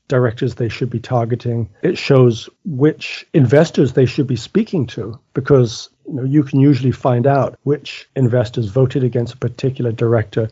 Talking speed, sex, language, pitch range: 160 wpm, male, English, 125-145 Hz